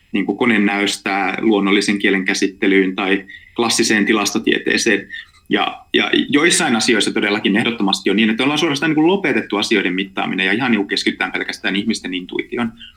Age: 30-49